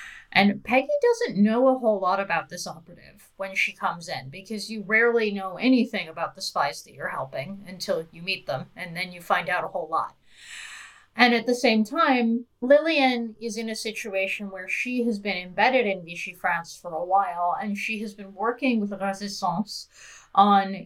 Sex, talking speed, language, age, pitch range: female, 190 wpm, English, 30-49, 185-220 Hz